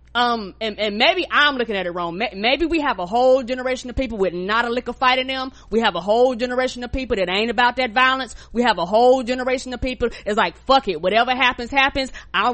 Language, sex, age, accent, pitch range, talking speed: English, female, 20-39, American, 230-300 Hz, 250 wpm